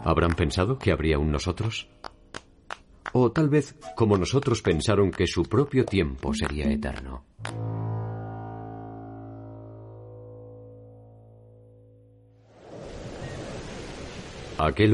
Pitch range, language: 80-115 Hz, Spanish